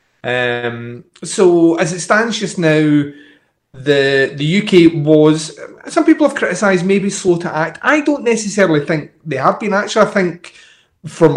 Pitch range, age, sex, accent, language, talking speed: 125-170 Hz, 30-49, male, British, English, 160 wpm